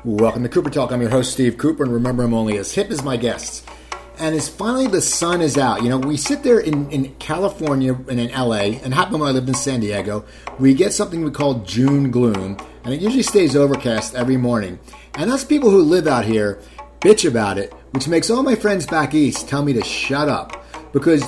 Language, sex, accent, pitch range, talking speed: English, male, American, 115-155 Hz, 230 wpm